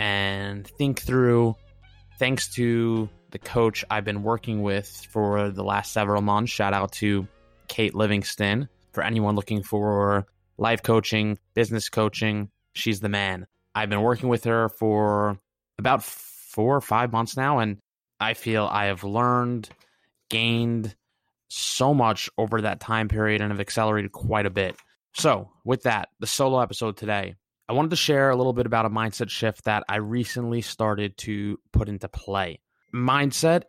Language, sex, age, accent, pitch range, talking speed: English, male, 20-39, American, 100-120 Hz, 160 wpm